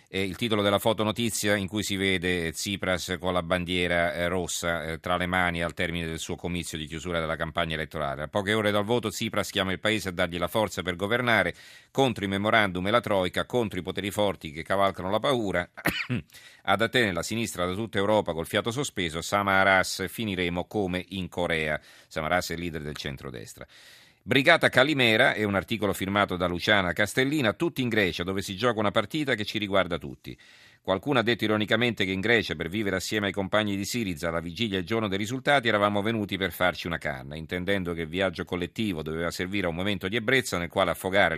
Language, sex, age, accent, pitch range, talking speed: Italian, male, 40-59, native, 85-110 Hz, 205 wpm